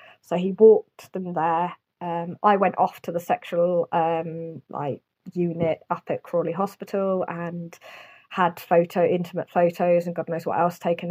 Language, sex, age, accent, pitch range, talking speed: English, female, 20-39, British, 175-215 Hz, 160 wpm